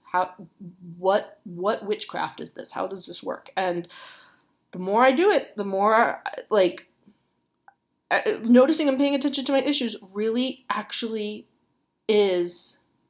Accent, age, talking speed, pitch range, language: American, 30-49, 135 wpm, 180-240 Hz, English